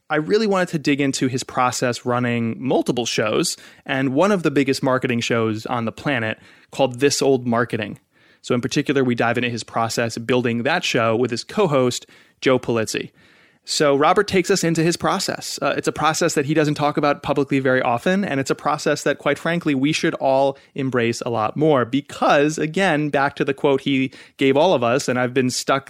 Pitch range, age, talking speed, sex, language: 125-155 Hz, 30-49, 210 wpm, male, English